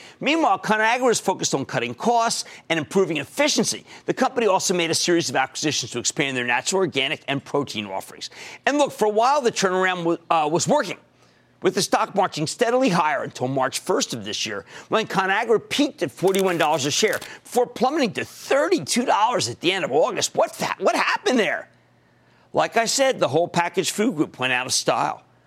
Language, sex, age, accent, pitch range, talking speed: English, male, 50-69, American, 145-230 Hz, 190 wpm